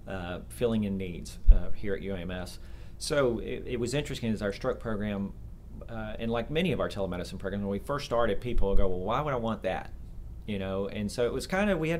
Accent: American